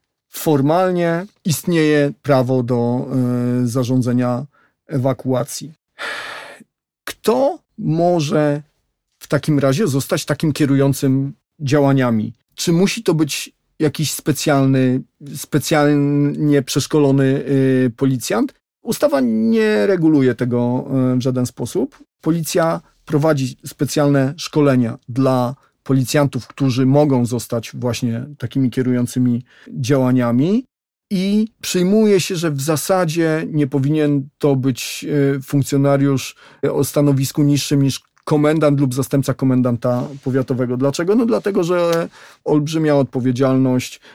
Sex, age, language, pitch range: male, 40-59, Polish, 130-155 Hz